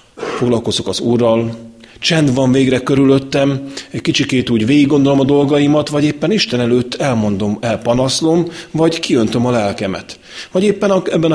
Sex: male